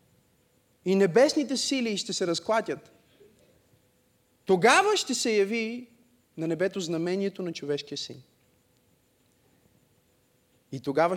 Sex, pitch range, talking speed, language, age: male, 140-215 Hz, 95 wpm, Bulgarian, 30-49